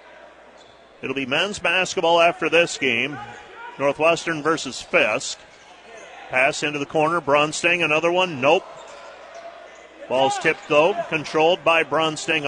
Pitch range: 150-170 Hz